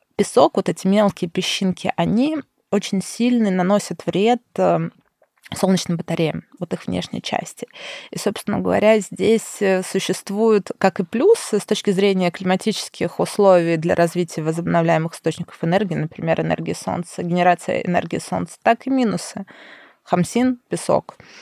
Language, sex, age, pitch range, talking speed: Russian, female, 20-39, 175-215 Hz, 125 wpm